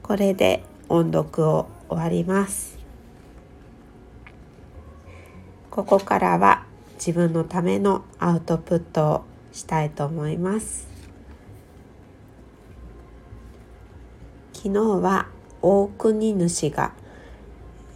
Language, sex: Japanese, female